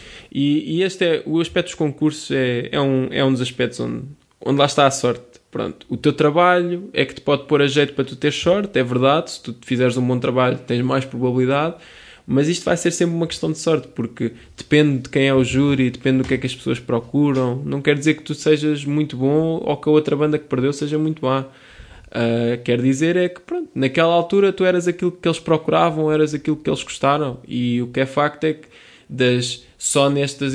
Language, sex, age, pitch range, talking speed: Portuguese, male, 20-39, 130-160 Hz, 230 wpm